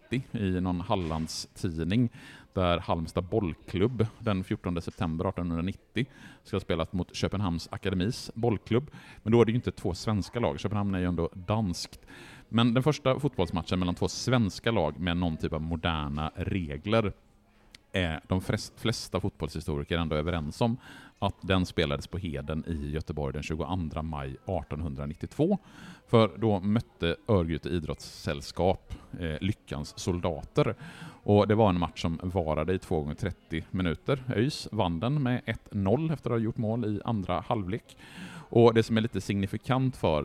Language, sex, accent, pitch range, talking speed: Swedish, male, Norwegian, 80-110 Hz, 155 wpm